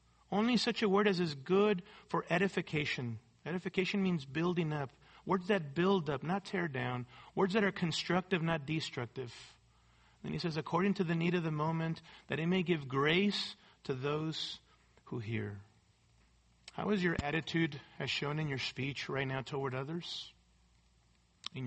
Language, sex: English, male